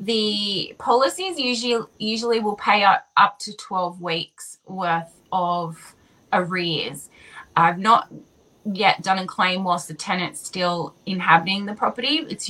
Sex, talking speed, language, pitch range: female, 135 wpm, English, 175-205 Hz